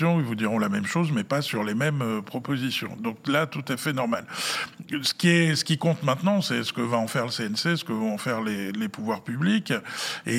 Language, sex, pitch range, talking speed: French, male, 115-160 Hz, 250 wpm